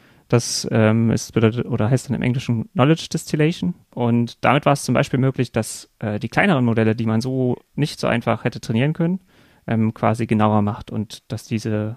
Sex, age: male, 30-49